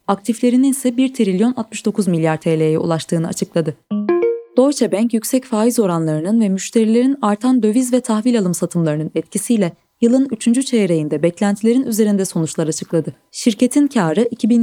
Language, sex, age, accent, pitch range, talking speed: Turkish, female, 20-39, native, 170-240 Hz, 130 wpm